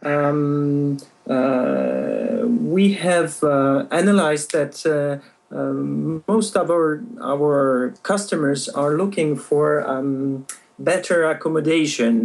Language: English